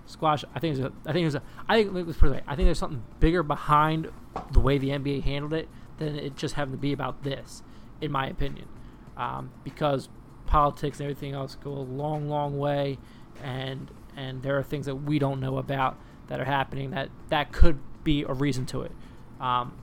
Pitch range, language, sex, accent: 135-150 Hz, English, male, American